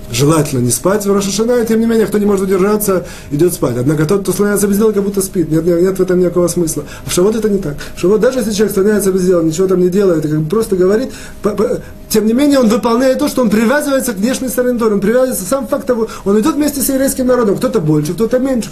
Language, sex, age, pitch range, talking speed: Russian, male, 30-49, 160-220 Hz, 250 wpm